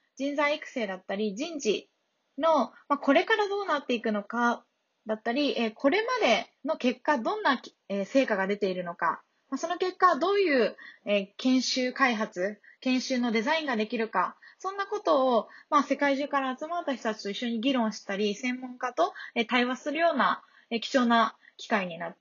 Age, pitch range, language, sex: 20-39, 220-300 Hz, Japanese, female